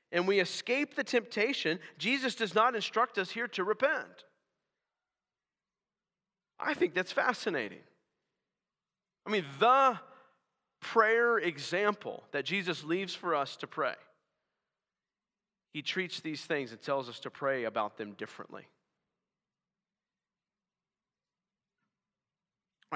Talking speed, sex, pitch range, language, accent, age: 110 wpm, male, 155-210 Hz, English, American, 40-59